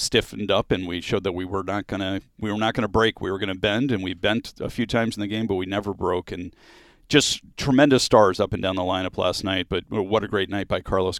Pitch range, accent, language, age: 95-115 Hz, American, English, 40-59